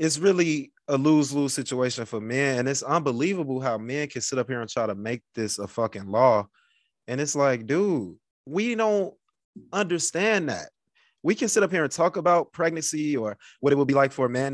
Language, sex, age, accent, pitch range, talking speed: English, male, 20-39, American, 120-155 Hz, 205 wpm